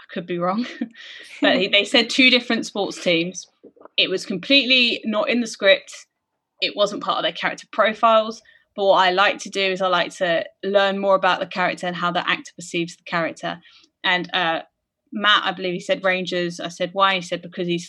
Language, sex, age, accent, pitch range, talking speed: English, female, 20-39, British, 175-220 Hz, 210 wpm